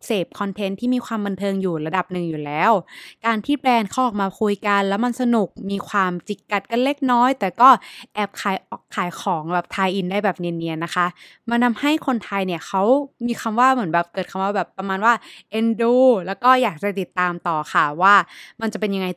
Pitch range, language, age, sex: 175-230 Hz, Thai, 20-39, female